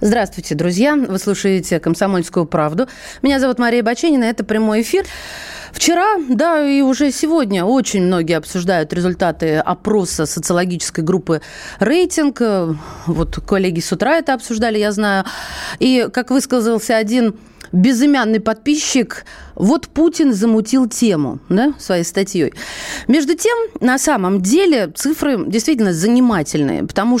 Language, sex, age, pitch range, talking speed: Russian, female, 30-49, 175-250 Hz, 120 wpm